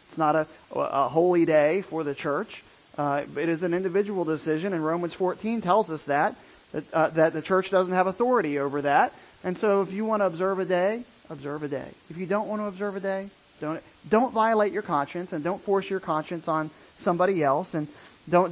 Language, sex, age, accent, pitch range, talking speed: English, male, 40-59, American, 160-210 Hz, 215 wpm